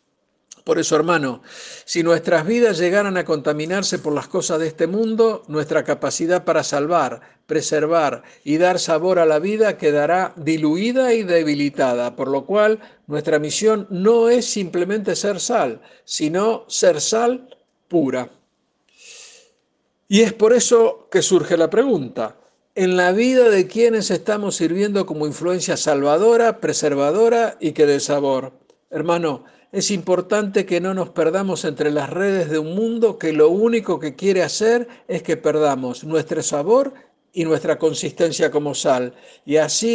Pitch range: 155-215 Hz